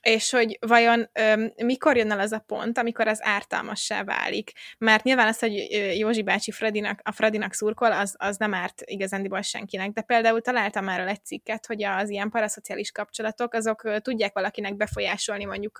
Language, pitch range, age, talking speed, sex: Hungarian, 205-230 Hz, 20-39, 175 wpm, female